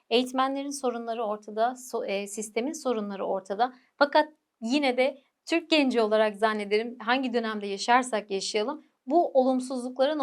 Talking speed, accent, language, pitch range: 125 wpm, native, Turkish, 210-260 Hz